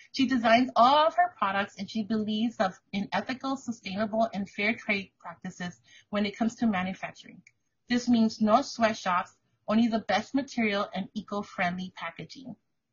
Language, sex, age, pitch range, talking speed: English, female, 30-49, 195-250 Hz, 150 wpm